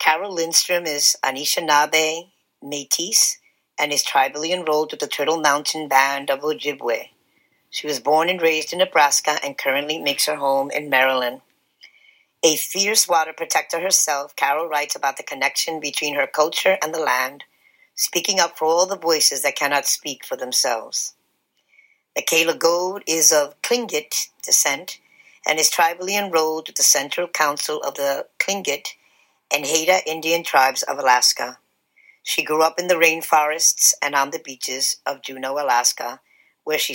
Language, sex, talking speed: English, female, 155 wpm